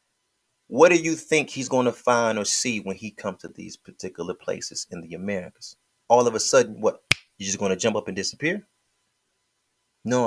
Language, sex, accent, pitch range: English, male, American, 120-195 Hz